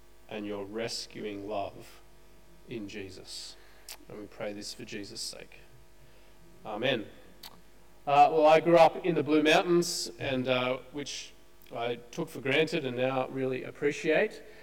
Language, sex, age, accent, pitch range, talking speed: English, male, 30-49, Australian, 120-155 Hz, 140 wpm